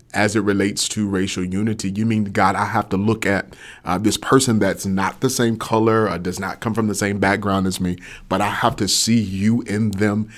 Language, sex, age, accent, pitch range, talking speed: English, male, 30-49, American, 95-110 Hz, 230 wpm